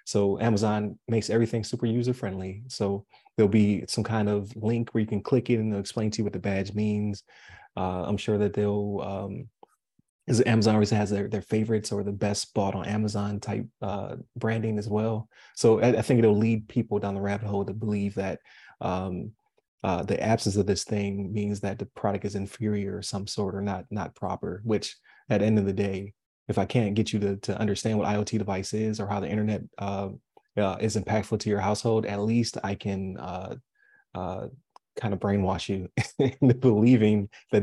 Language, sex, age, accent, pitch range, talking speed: English, male, 30-49, American, 100-110 Hz, 205 wpm